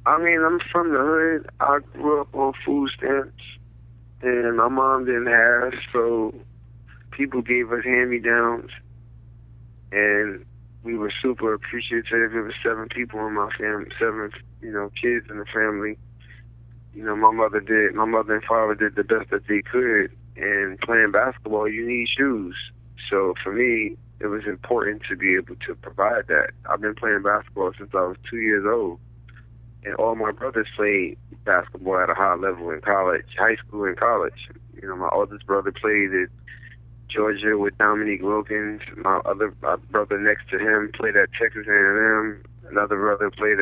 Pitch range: 105-120 Hz